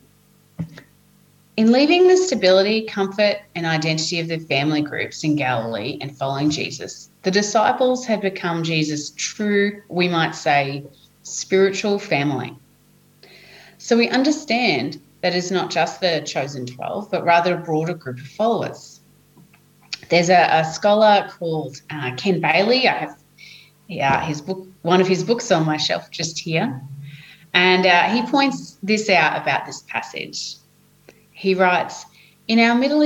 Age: 30-49